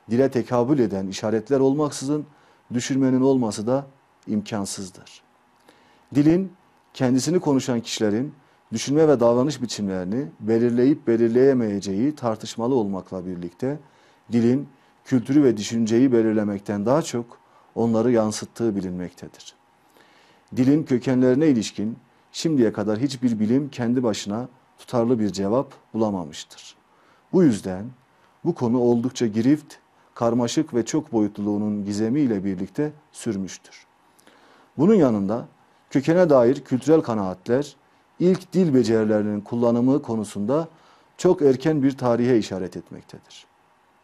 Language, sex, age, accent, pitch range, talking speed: Turkish, male, 40-59, native, 105-135 Hz, 100 wpm